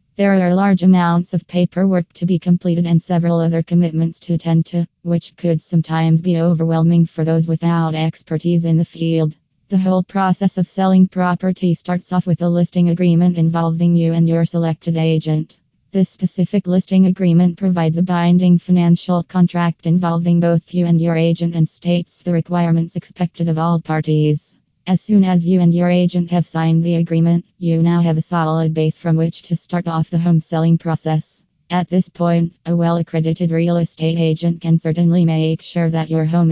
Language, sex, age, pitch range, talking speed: English, female, 20-39, 165-175 Hz, 180 wpm